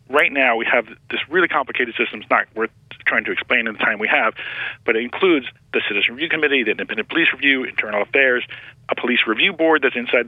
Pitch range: 120-140 Hz